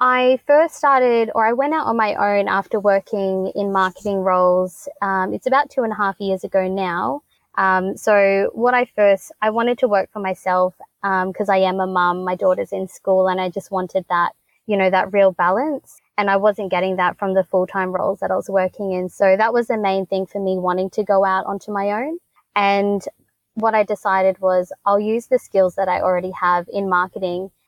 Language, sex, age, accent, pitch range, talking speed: English, female, 20-39, Australian, 185-210 Hz, 215 wpm